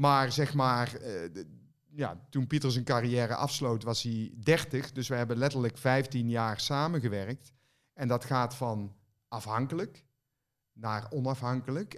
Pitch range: 115-135 Hz